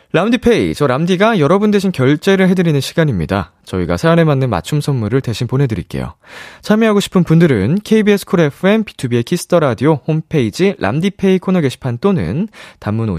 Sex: male